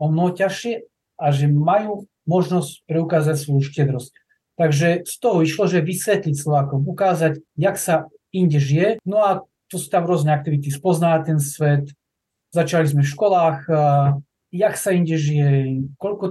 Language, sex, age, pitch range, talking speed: Slovak, male, 40-59, 150-185 Hz, 150 wpm